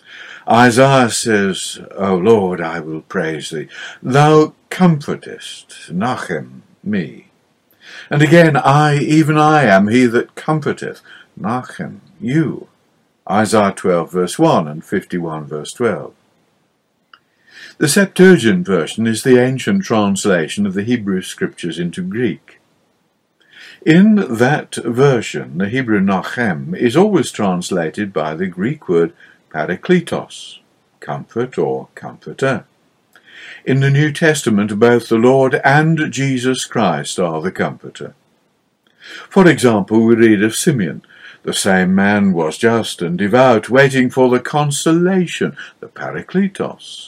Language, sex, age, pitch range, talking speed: English, male, 60-79, 105-155 Hz, 120 wpm